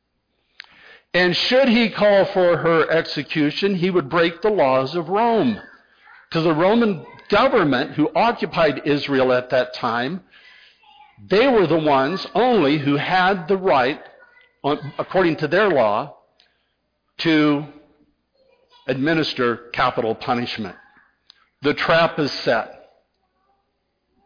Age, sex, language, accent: 60-79, male, English, American